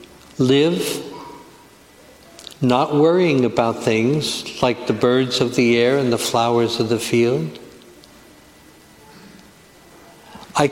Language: English